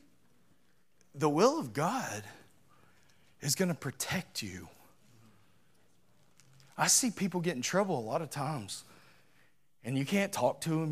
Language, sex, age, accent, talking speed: English, male, 30-49, American, 135 wpm